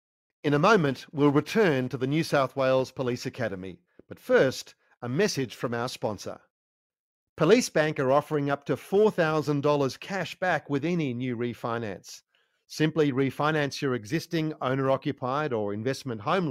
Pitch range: 120-155 Hz